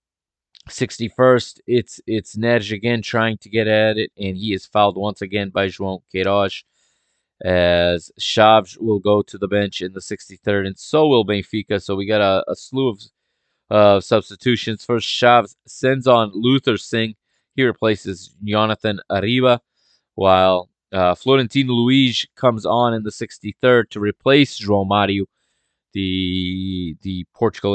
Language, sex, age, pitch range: English, male, 20-39, 95-115 Hz